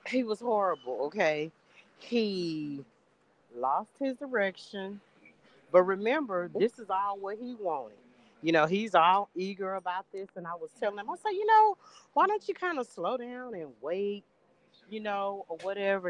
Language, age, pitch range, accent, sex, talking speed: English, 40-59, 155-205 Hz, American, female, 170 wpm